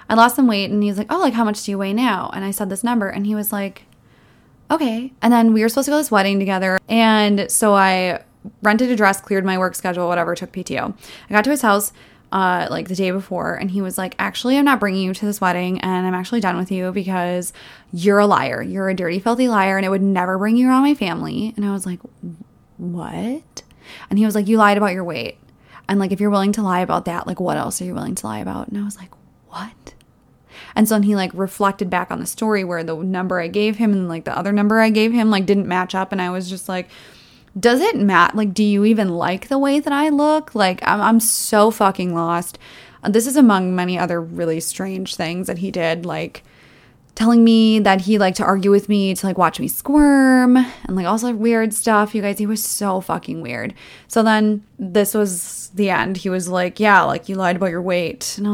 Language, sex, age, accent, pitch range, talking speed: English, female, 20-39, American, 185-220 Hz, 250 wpm